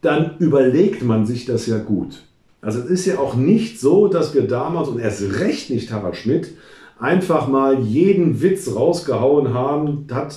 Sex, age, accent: male, 50-69, German